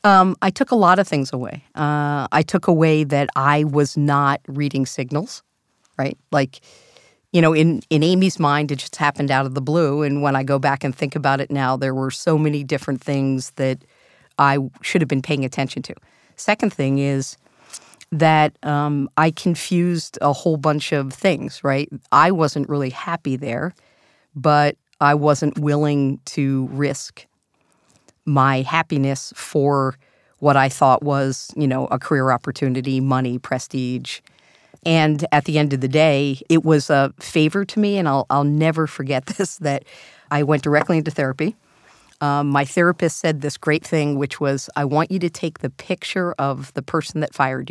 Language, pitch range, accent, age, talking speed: English, 140-160 Hz, American, 50-69, 175 wpm